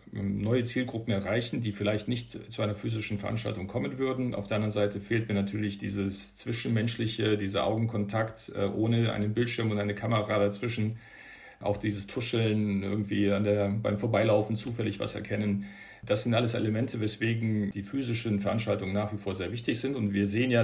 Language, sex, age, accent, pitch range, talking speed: German, male, 50-69, German, 100-115 Hz, 170 wpm